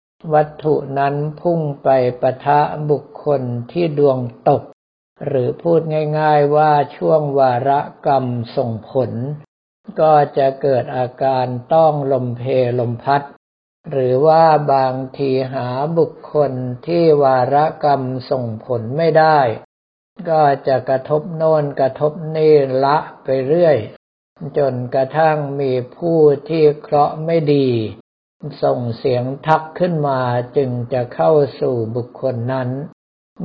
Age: 60-79